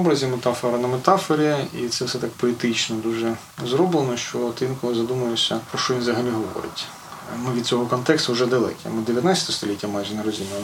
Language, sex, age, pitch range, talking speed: Ukrainian, male, 20-39, 120-155 Hz, 180 wpm